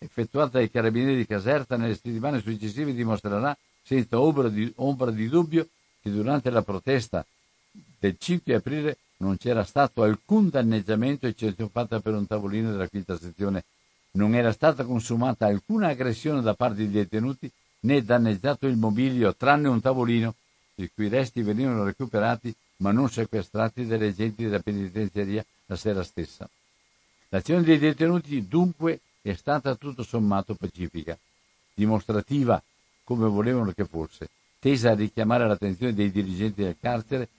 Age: 60-79